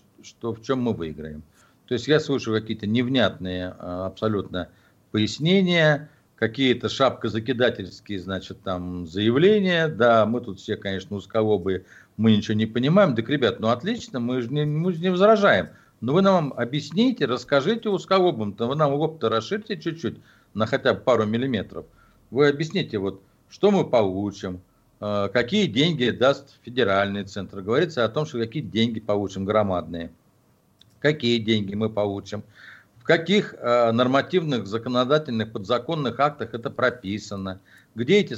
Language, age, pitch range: Russian, 50-69, 105-140 Hz